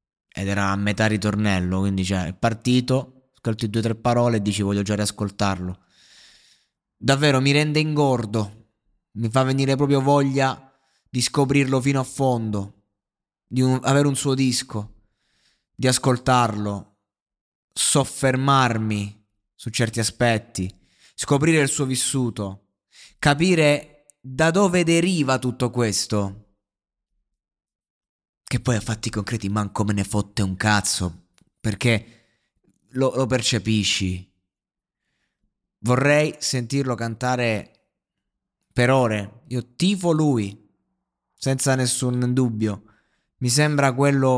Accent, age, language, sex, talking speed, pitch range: native, 20-39, Italian, male, 115 wpm, 105-130 Hz